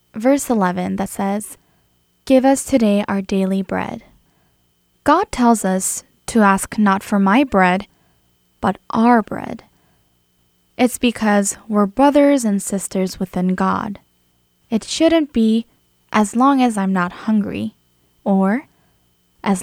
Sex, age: female, 10-29